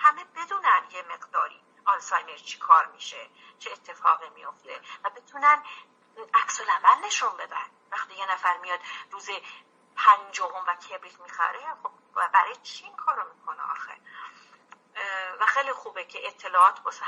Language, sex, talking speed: Persian, female, 135 wpm